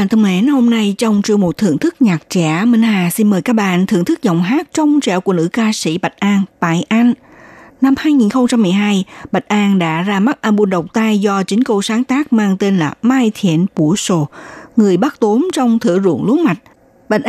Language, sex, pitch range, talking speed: Vietnamese, female, 180-235 Hz, 215 wpm